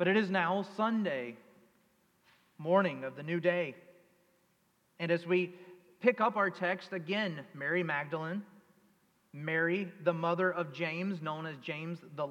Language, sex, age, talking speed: English, male, 40-59, 140 wpm